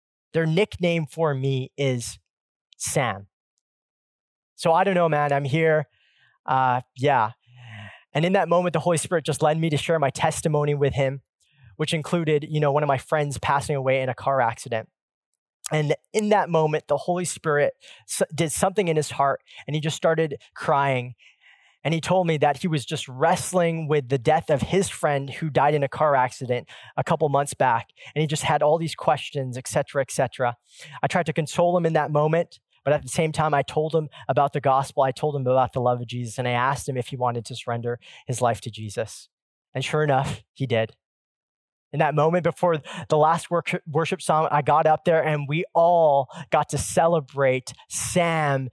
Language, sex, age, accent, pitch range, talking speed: English, male, 20-39, American, 130-160 Hz, 200 wpm